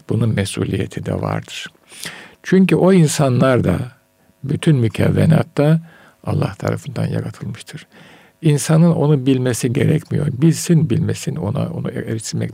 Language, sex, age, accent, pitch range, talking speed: Turkish, male, 50-69, native, 125-160 Hz, 105 wpm